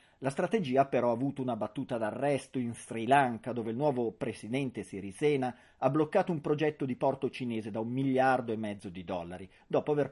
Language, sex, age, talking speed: Italian, male, 40-59, 190 wpm